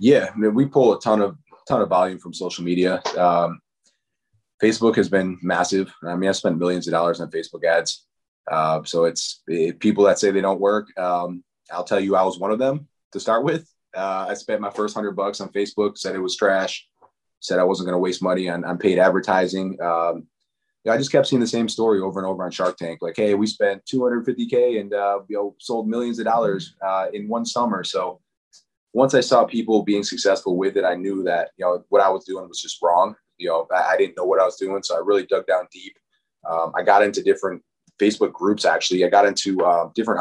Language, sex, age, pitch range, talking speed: English, male, 20-39, 90-105 Hz, 240 wpm